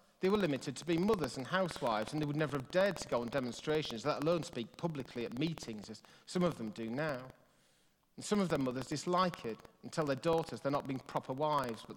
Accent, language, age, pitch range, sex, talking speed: British, English, 40-59, 125-165 Hz, male, 235 wpm